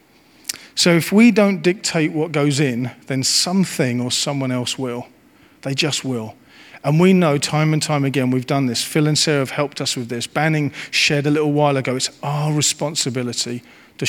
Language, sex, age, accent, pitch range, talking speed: English, male, 40-59, British, 130-160 Hz, 190 wpm